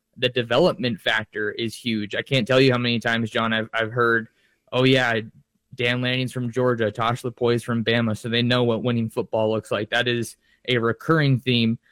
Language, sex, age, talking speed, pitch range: English, male, 20-39, 195 wpm, 115-130 Hz